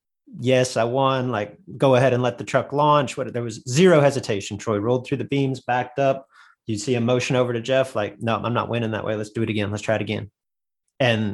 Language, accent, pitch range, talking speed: English, American, 120-150 Hz, 245 wpm